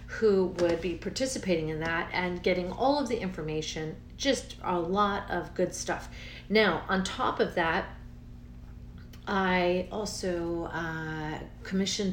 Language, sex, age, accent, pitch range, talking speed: English, female, 40-59, American, 170-200 Hz, 135 wpm